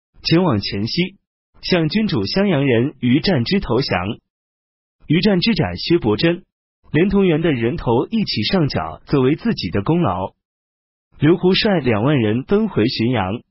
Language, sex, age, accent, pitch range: Chinese, male, 30-49, native, 115-190 Hz